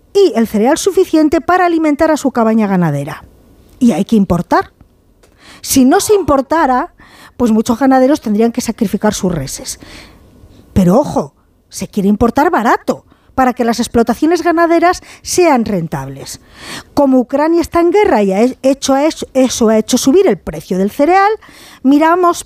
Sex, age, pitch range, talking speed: female, 40-59, 205-315 Hz, 150 wpm